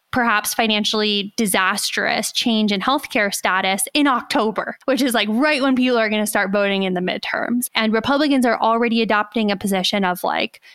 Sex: female